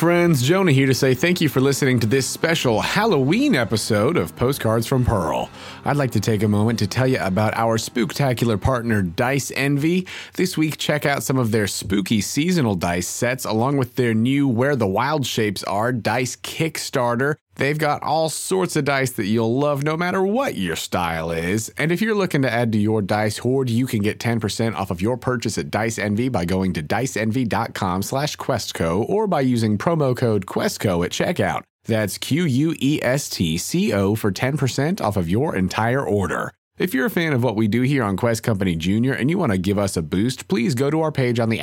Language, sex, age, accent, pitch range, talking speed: English, male, 30-49, American, 110-145 Hz, 205 wpm